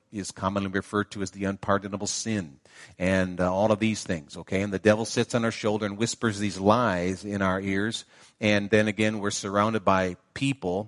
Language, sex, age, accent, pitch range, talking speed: English, male, 50-69, American, 100-115 Hz, 200 wpm